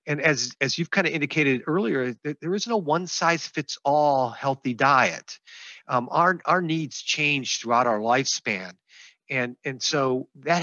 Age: 40-59